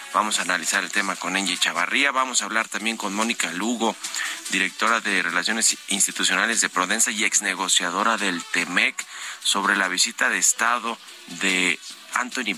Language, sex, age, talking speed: Spanish, male, 40-59, 160 wpm